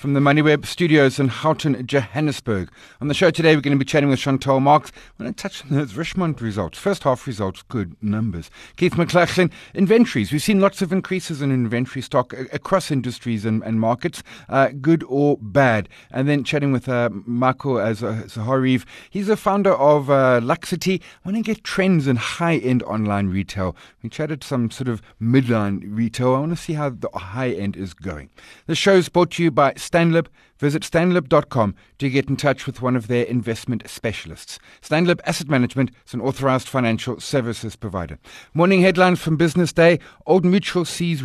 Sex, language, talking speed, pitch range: male, English, 190 wpm, 120-165 Hz